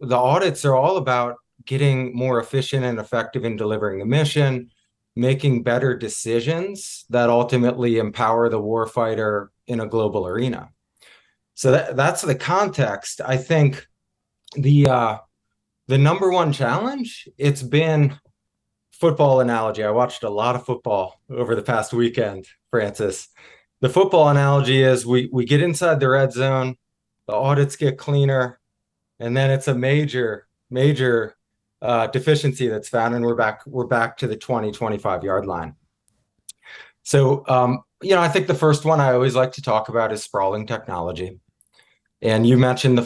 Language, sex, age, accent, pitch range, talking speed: English, male, 20-39, American, 115-140 Hz, 155 wpm